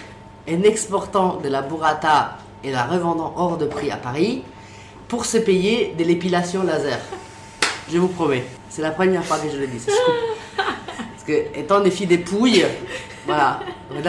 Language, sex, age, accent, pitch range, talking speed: English, female, 20-39, French, 135-185 Hz, 165 wpm